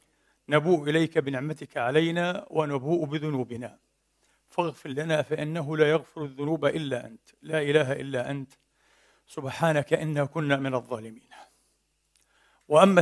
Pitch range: 130-150 Hz